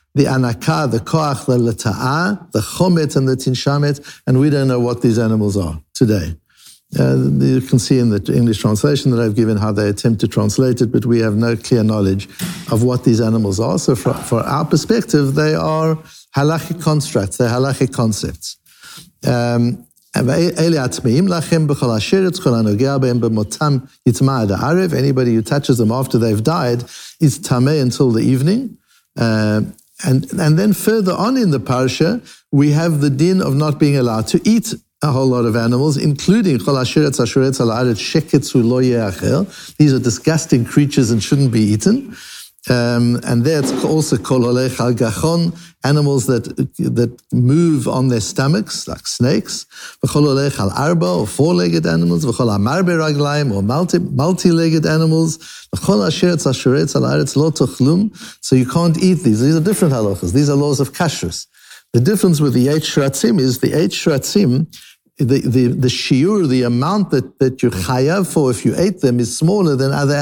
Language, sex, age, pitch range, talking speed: English, male, 60-79, 120-160 Hz, 145 wpm